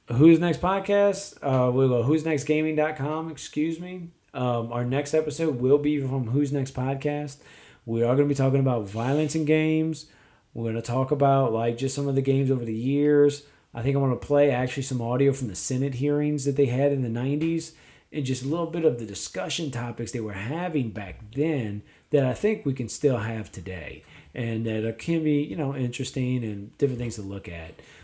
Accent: American